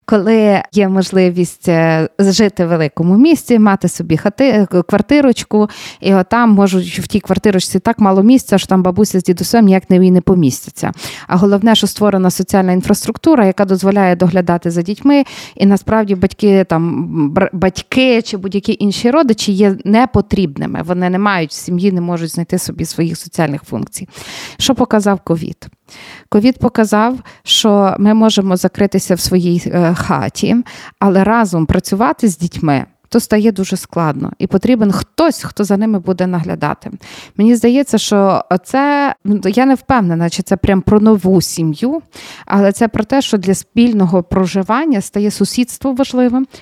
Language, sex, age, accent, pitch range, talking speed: Ukrainian, female, 20-39, native, 185-225 Hz, 150 wpm